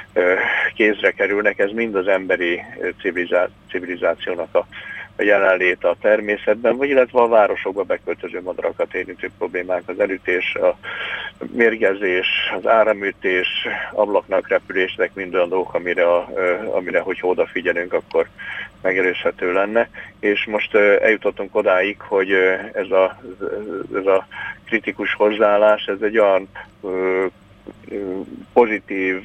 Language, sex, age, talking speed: Hungarian, male, 50-69, 105 wpm